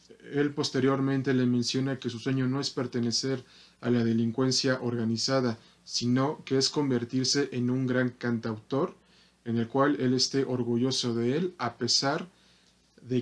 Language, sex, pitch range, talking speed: Spanish, male, 120-145 Hz, 150 wpm